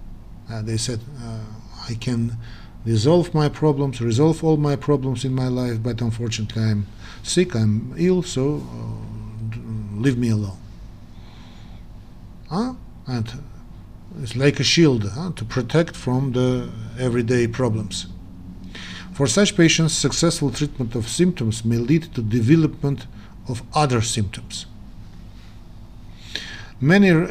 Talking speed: 115 wpm